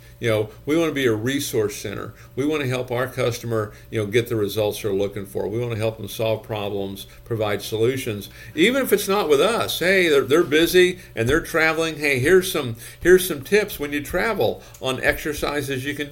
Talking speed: 215 wpm